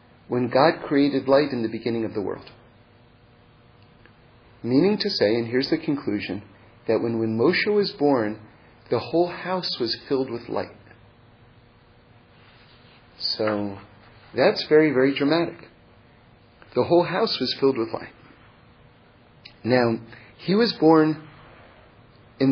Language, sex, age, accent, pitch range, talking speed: English, male, 40-59, American, 120-160 Hz, 125 wpm